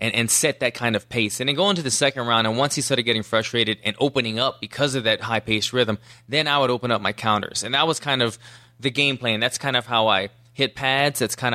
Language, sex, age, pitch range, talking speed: English, male, 20-39, 115-140 Hz, 270 wpm